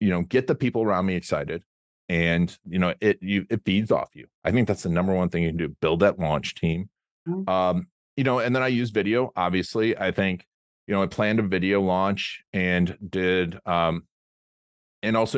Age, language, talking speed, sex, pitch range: 30-49, English, 210 wpm, male, 90-110 Hz